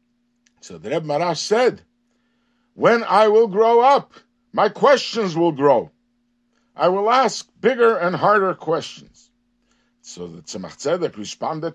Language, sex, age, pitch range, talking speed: English, male, 60-79, 160-240 Hz, 135 wpm